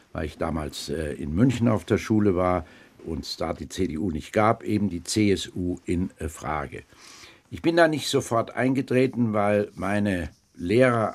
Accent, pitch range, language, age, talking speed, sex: German, 90-115 Hz, German, 60-79, 160 wpm, male